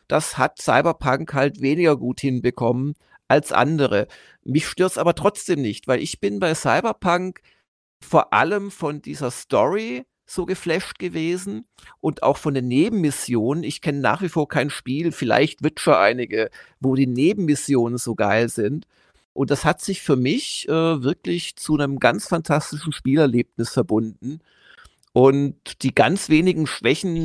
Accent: German